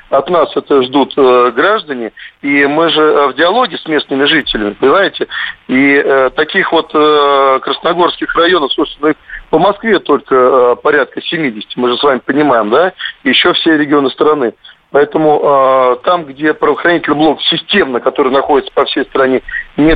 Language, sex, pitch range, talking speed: Russian, male, 125-155 Hz, 160 wpm